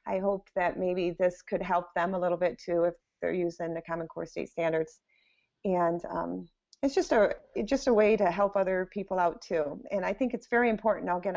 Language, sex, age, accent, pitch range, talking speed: English, female, 30-49, American, 180-225 Hz, 220 wpm